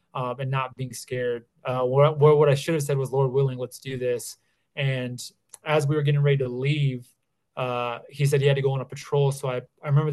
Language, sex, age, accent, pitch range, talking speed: English, male, 20-39, American, 130-145 Hz, 235 wpm